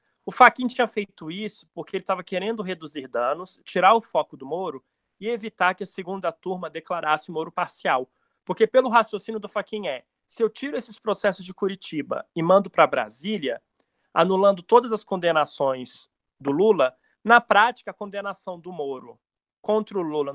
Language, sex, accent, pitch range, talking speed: Portuguese, male, Brazilian, 165-220 Hz, 170 wpm